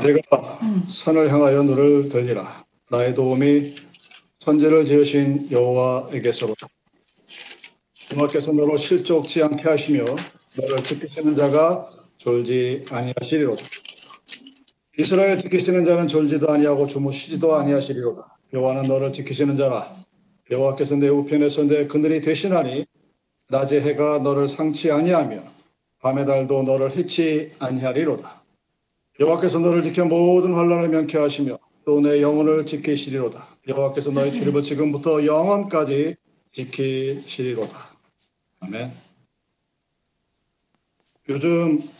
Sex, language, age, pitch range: male, Korean, 50-69, 135-160 Hz